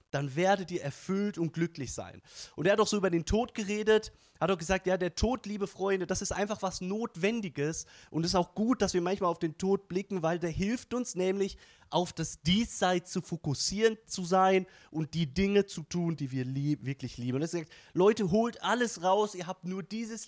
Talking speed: 220 wpm